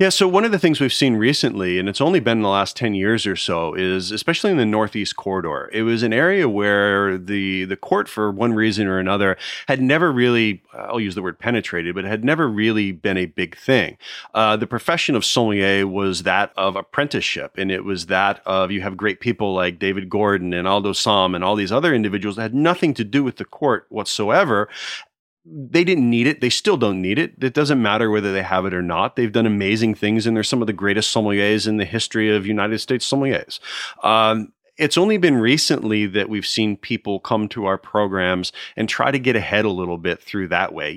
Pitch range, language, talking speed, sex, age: 100-115 Hz, English, 230 wpm, male, 30-49